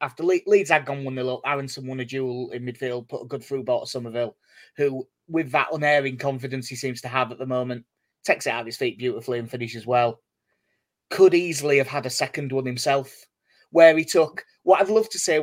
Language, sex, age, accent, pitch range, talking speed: English, male, 30-49, British, 125-155 Hz, 220 wpm